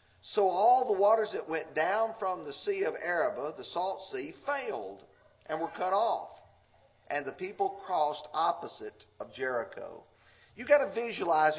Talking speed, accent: 160 wpm, American